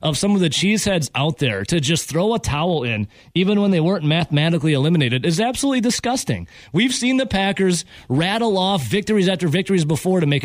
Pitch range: 145-205 Hz